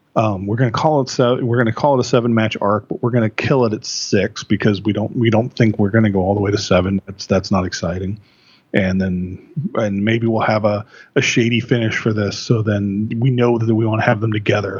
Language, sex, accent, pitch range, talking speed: English, male, American, 105-135 Hz, 270 wpm